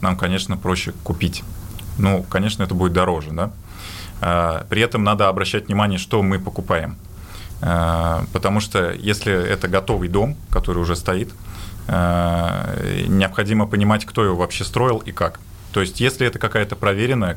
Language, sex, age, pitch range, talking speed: Russian, male, 20-39, 90-105 Hz, 150 wpm